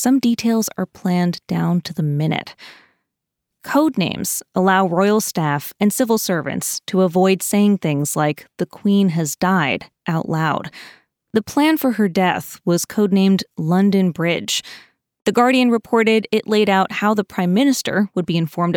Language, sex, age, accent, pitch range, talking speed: English, female, 20-39, American, 170-220 Hz, 155 wpm